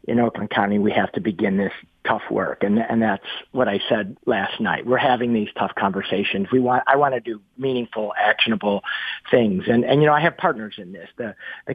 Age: 50-69